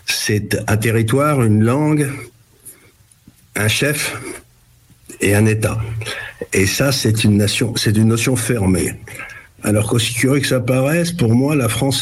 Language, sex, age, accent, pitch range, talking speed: French, male, 60-79, French, 105-130 Hz, 145 wpm